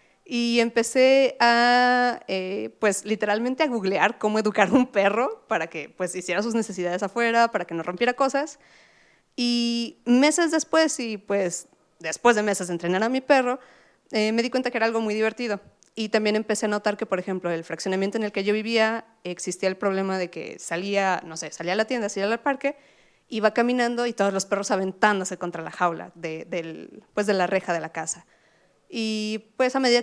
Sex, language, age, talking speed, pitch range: female, Spanish, 30-49, 200 wpm, 190-240 Hz